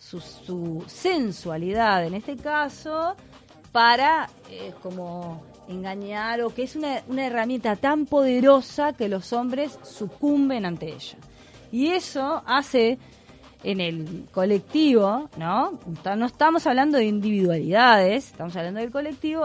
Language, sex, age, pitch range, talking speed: Spanish, female, 20-39, 185-275 Hz, 125 wpm